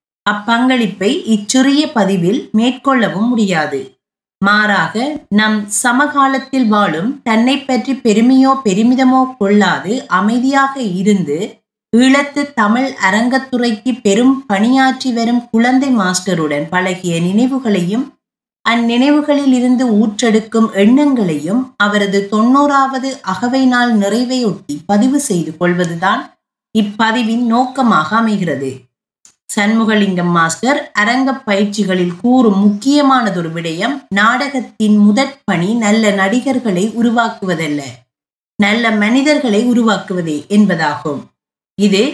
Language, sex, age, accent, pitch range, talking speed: Tamil, female, 30-49, native, 200-260 Hz, 75 wpm